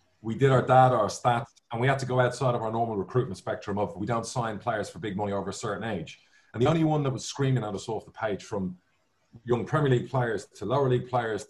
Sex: male